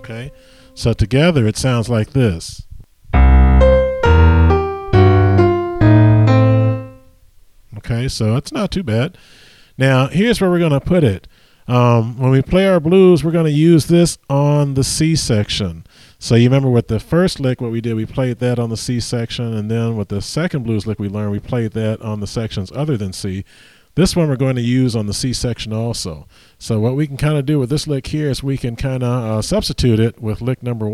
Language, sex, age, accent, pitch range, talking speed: English, male, 40-59, American, 105-140 Hz, 200 wpm